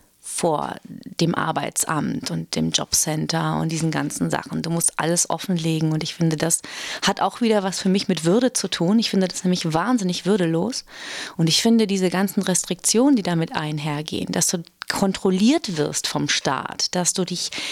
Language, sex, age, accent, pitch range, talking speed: German, female, 30-49, German, 170-200 Hz, 175 wpm